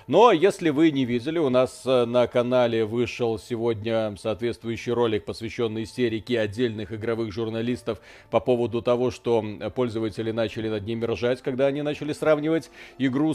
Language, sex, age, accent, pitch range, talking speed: Russian, male, 40-59, native, 115-150 Hz, 145 wpm